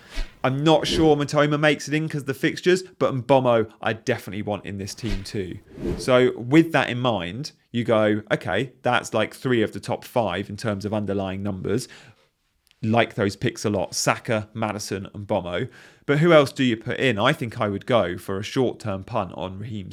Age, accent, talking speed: 30-49, British, 200 wpm